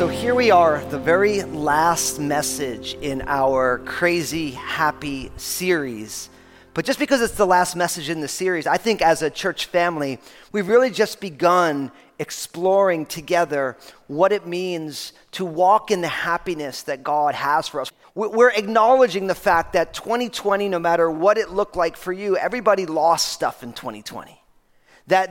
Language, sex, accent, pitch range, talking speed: English, male, American, 160-200 Hz, 160 wpm